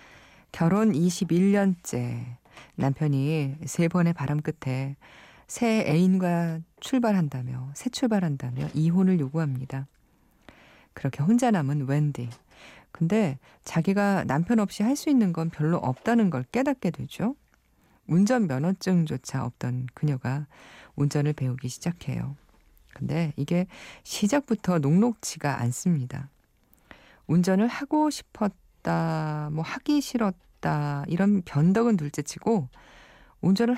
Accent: native